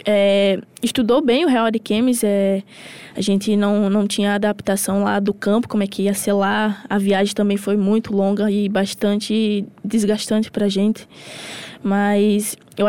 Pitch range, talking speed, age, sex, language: 205-230 Hz, 170 wpm, 10-29, female, Portuguese